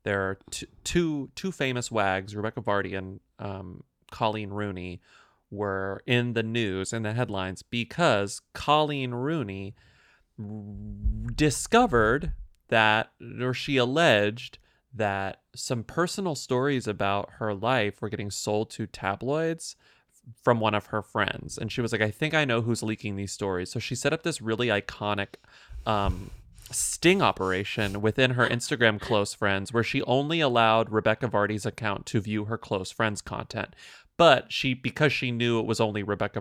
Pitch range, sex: 105-125 Hz, male